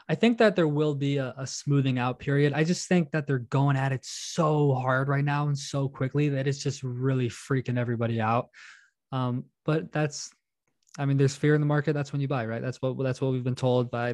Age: 20-39